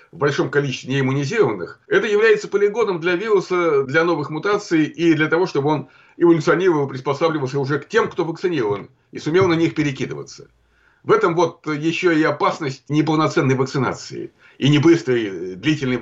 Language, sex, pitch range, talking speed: Russian, male, 130-180 Hz, 150 wpm